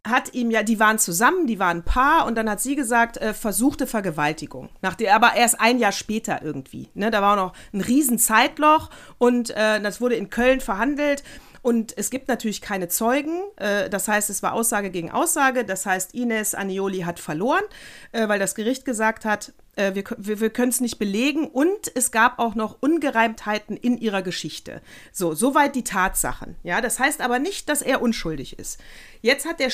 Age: 40-59